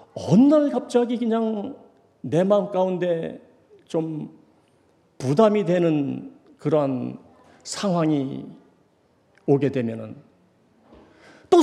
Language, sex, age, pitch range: Korean, male, 40-59, 130-200 Hz